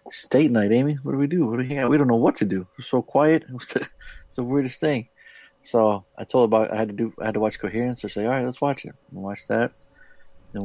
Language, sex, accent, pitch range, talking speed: English, male, American, 110-135 Hz, 280 wpm